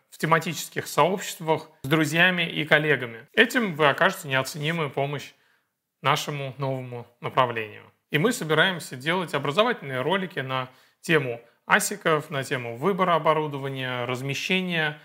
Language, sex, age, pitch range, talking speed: Russian, male, 30-49, 135-175 Hz, 115 wpm